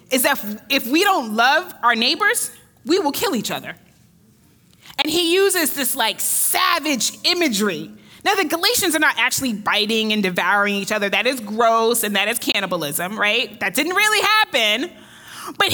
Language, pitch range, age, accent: English, 240-350 Hz, 30-49, American